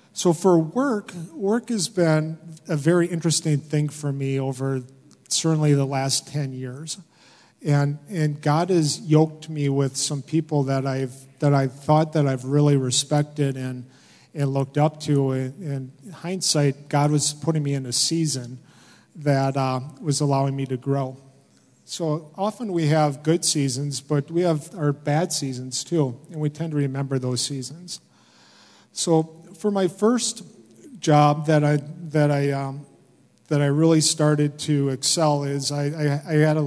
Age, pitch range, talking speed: 40-59, 140-160 Hz, 165 wpm